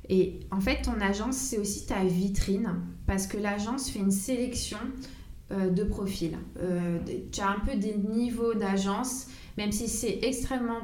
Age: 20-39